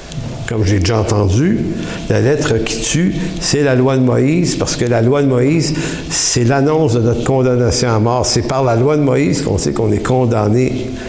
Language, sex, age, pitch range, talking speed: English, male, 60-79, 110-145 Hz, 200 wpm